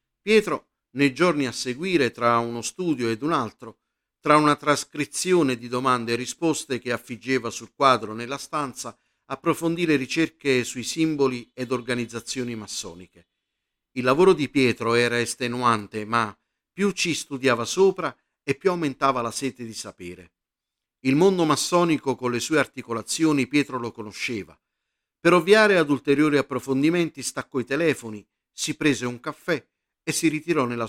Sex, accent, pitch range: male, native, 115-155 Hz